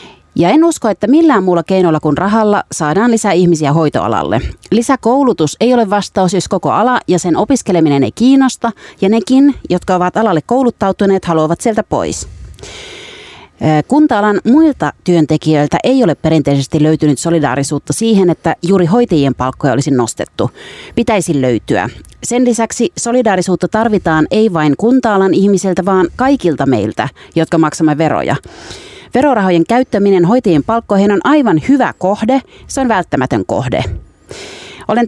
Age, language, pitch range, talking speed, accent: 30-49, Finnish, 160-225 Hz, 135 wpm, native